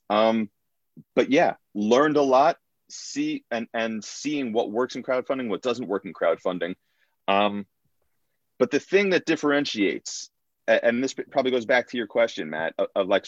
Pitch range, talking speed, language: 100-130 Hz, 165 wpm, English